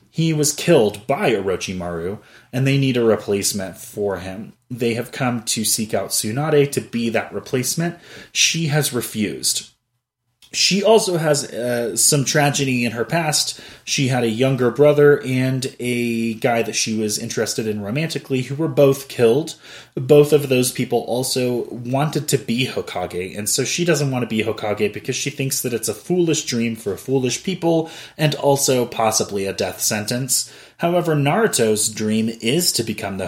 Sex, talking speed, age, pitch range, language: male, 170 wpm, 30-49, 110-145 Hz, English